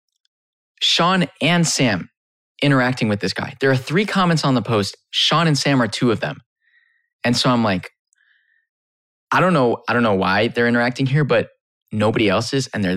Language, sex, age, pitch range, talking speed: English, male, 20-39, 105-135 Hz, 190 wpm